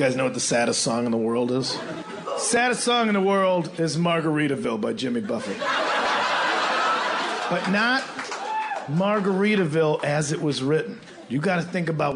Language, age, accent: English, 40-59, American